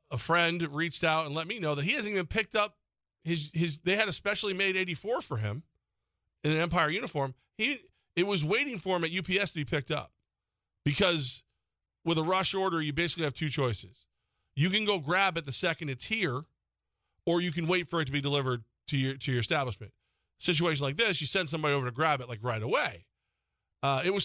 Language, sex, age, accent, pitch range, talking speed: English, male, 40-59, American, 130-185 Hz, 220 wpm